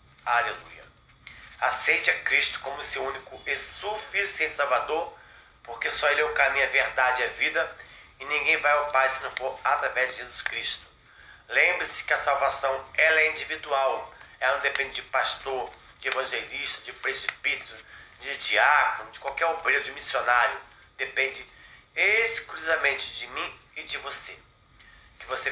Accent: Brazilian